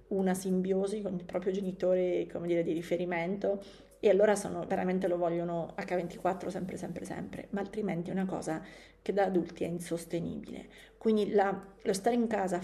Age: 30-49